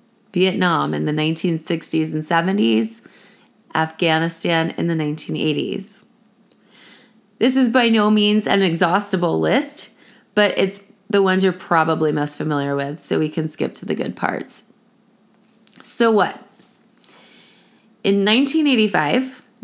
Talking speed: 120 wpm